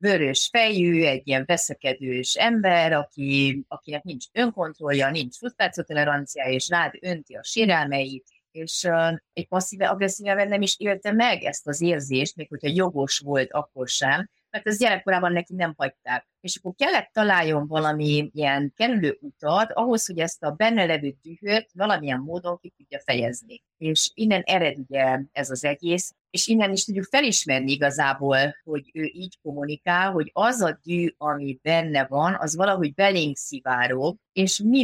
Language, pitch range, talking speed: Hungarian, 135-185 Hz, 155 wpm